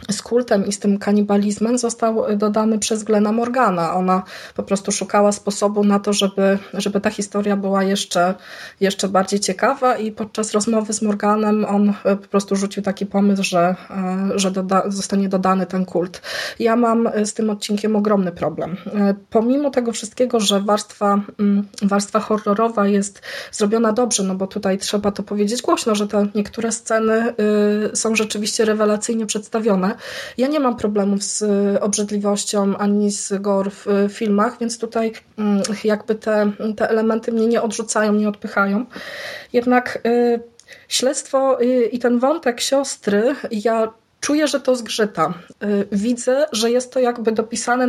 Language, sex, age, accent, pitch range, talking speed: Polish, female, 20-39, native, 200-230 Hz, 150 wpm